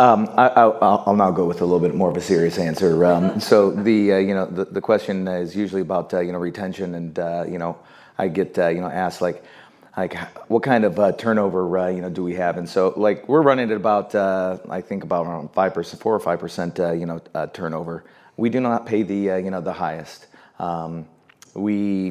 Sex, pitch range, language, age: male, 90-95 Hz, English, 30-49